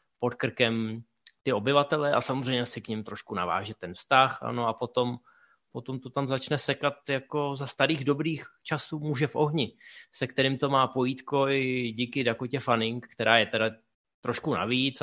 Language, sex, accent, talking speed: Czech, male, native, 170 wpm